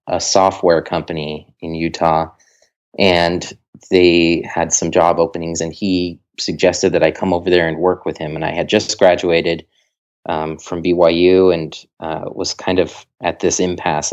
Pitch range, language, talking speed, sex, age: 85-95 Hz, English, 165 wpm, male, 30-49